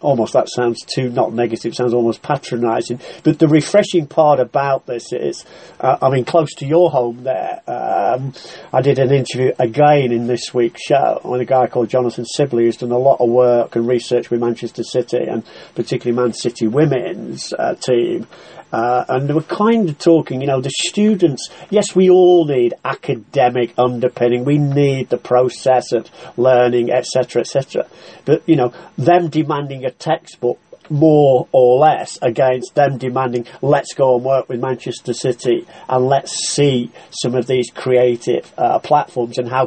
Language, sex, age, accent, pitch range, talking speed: English, male, 40-59, British, 120-140 Hz, 170 wpm